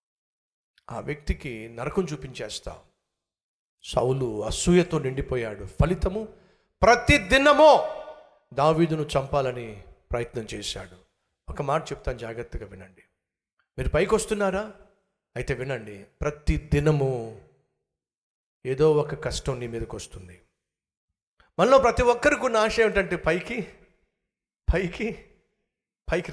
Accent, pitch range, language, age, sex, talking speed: native, 130-215 Hz, Telugu, 50-69, male, 90 wpm